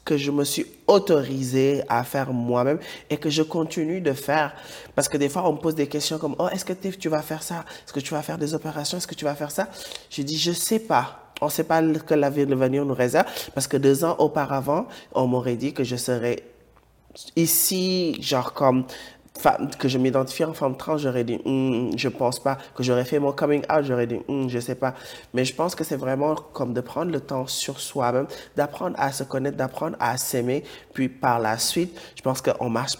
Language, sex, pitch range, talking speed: English, male, 120-145 Hz, 240 wpm